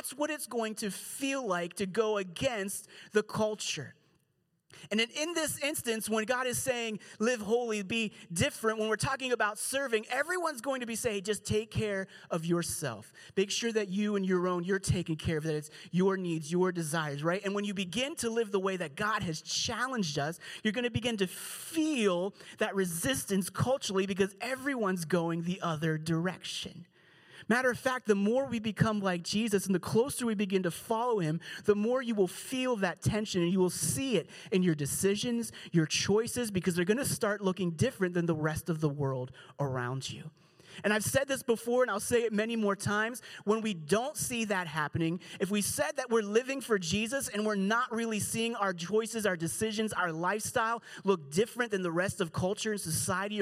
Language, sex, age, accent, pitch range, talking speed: English, male, 30-49, American, 175-225 Hz, 200 wpm